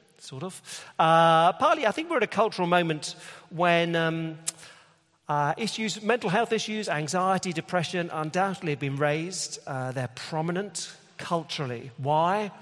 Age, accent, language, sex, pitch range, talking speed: 40-59, British, English, male, 130-165 Hz, 140 wpm